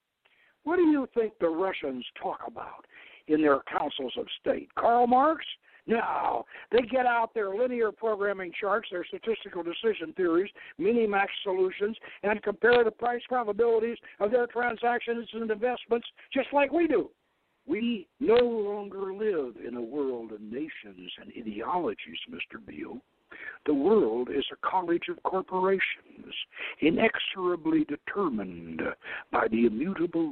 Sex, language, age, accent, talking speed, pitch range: male, English, 60-79, American, 135 wpm, 180-245 Hz